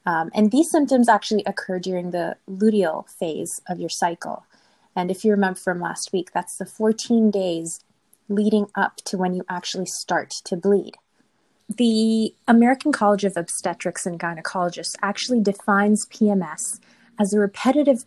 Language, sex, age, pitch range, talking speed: English, female, 20-39, 185-230 Hz, 150 wpm